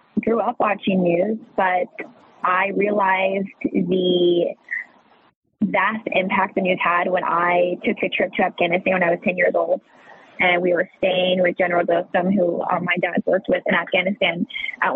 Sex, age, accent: female, 20-39, American